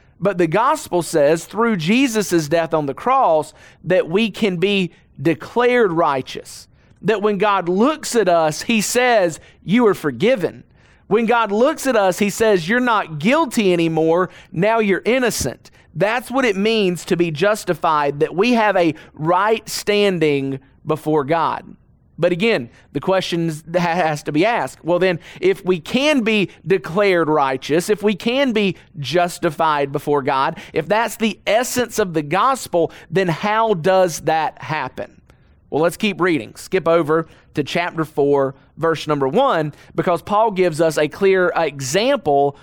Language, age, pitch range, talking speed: English, 40-59, 155-210 Hz, 155 wpm